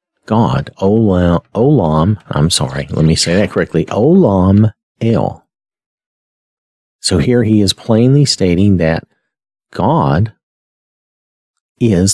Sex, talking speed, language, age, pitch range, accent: male, 105 wpm, English, 40-59, 85-120 Hz, American